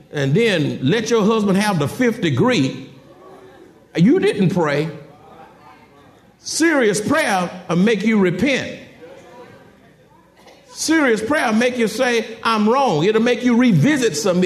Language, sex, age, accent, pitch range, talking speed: English, male, 50-69, American, 160-240 Hz, 130 wpm